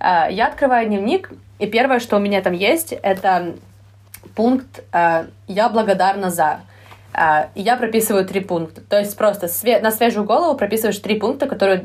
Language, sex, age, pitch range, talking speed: Ukrainian, female, 20-39, 175-215 Hz, 170 wpm